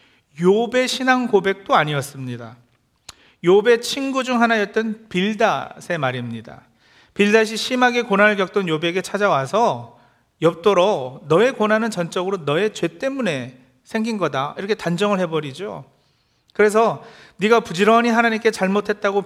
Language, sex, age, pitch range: Korean, male, 40-59, 165-225 Hz